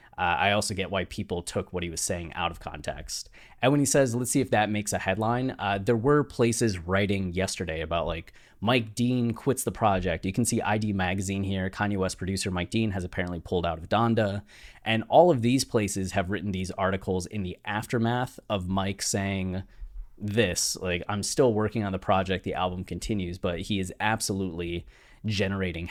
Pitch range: 95-115 Hz